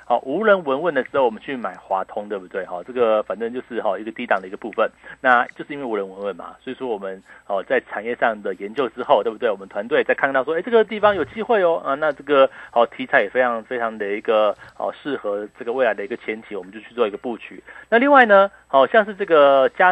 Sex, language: male, Chinese